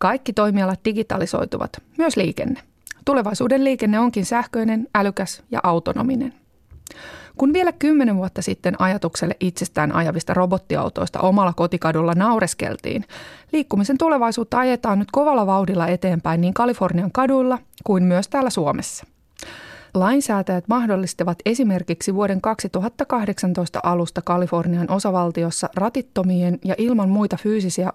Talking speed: 110 wpm